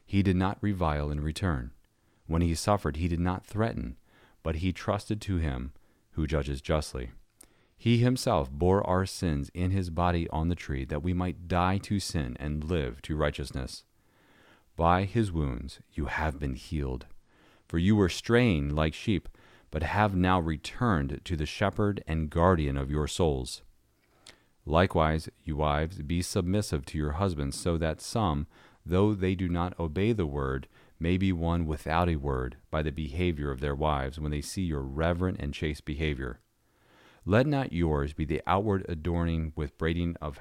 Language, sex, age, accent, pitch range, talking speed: English, male, 40-59, American, 75-95 Hz, 170 wpm